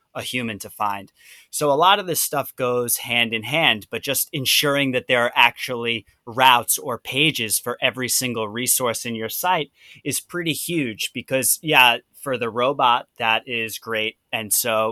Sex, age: male, 20-39